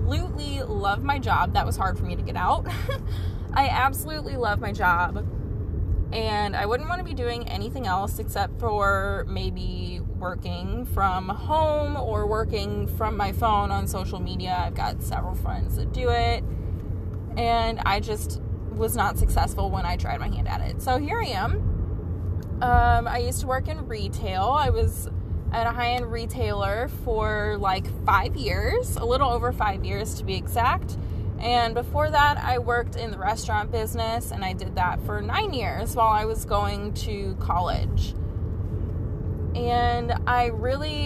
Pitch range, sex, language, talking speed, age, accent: 90-105 Hz, female, English, 165 wpm, 20-39, American